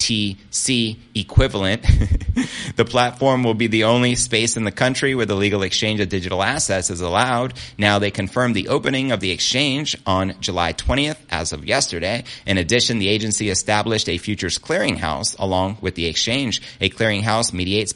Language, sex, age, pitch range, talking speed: English, male, 30-49, 95-115 Hz, 170 wpm